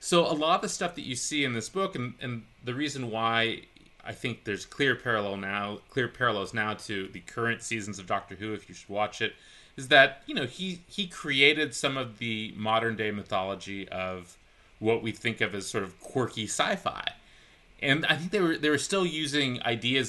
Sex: male